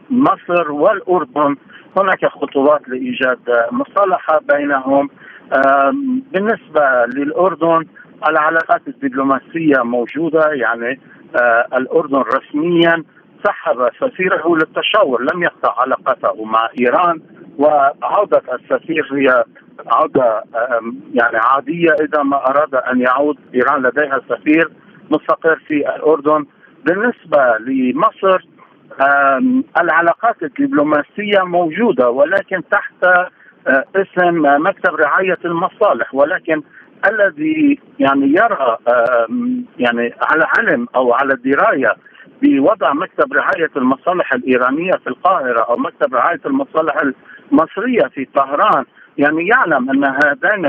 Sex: male